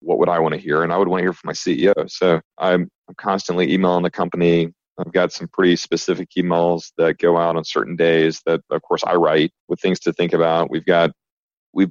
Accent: American